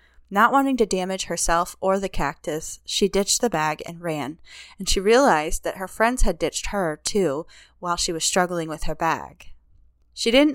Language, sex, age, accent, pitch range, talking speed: English, female, 20-39, American, 150-210 Hz, 190 wpm